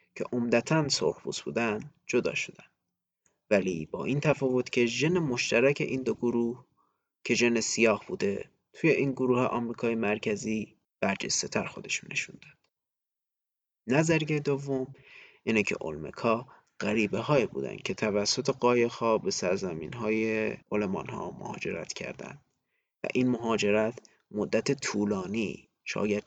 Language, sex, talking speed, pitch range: Persian, male, 125 wpm, 110-140 Hz